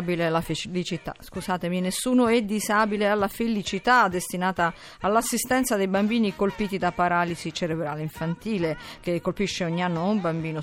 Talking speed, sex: 130 wpm, female